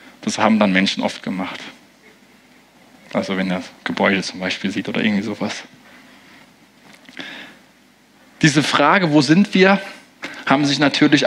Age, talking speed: 20-39, 135 wpm